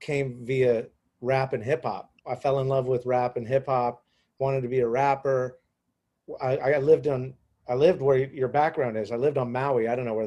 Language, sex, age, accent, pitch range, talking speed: English, male, 30-49, American, 125-150 Hz, 220 wpm